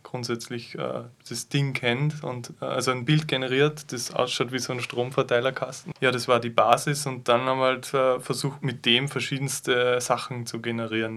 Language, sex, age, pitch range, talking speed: German, male, 20-39, 120-130 Hz, 195 wpm